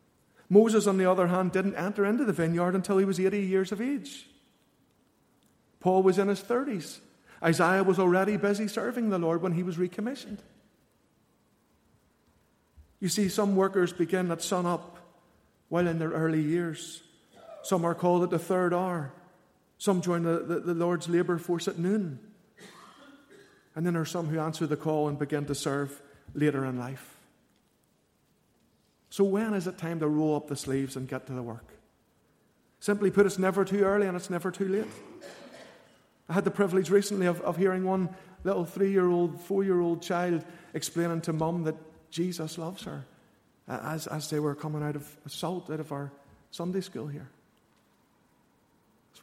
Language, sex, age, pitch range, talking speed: English, male, 50-69, 160-190 Hz, 170 wpm